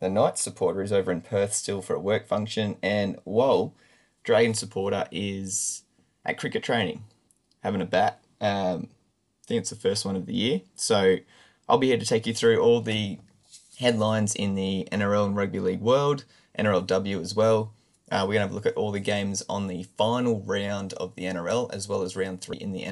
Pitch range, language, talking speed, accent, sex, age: 95-115 Hz, English, 205 wpm, Australian, male, 20-39